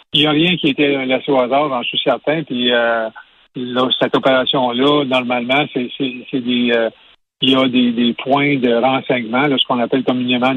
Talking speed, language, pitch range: 205 wpm, French, 125-145 Hz